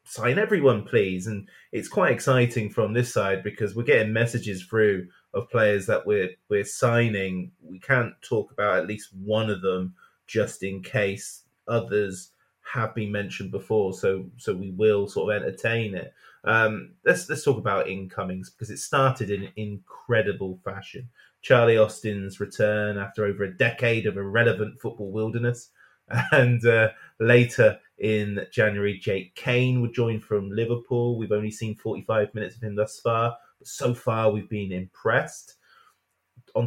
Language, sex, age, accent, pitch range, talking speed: English, male, 20-39, British, 100-120 Hz, 155 wpm